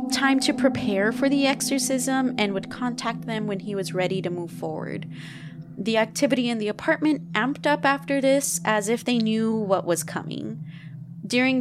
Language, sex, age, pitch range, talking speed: English, female, 20-39, 185-250 Hz, 175 wpm